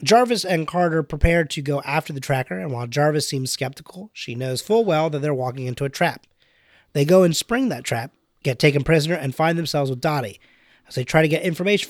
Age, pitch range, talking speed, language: 30-49, 130-175 Hz, 220 wpm, English